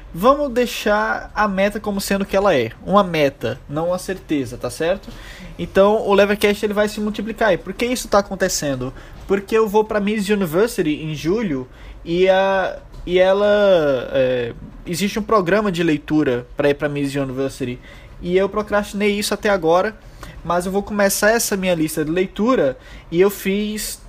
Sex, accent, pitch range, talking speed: male, Brazilian, 160-210 Hz, 175 wpm